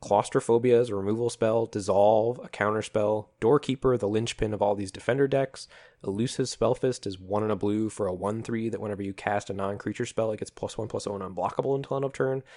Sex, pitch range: male, 100-125 Hz